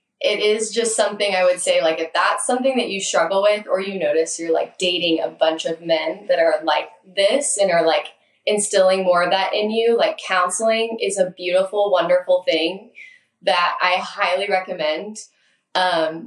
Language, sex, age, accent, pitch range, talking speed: English, female, 10-29, American, 170-215 Hz, 185 wpm